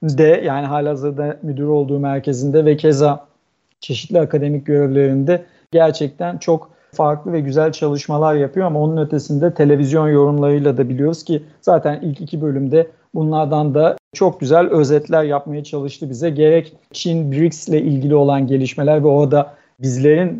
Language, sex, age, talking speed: Turkish, male, 50-69, 145 wpm